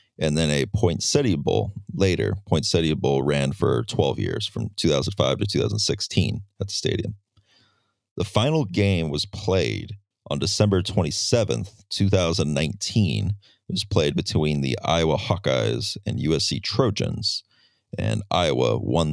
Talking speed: 130 wpm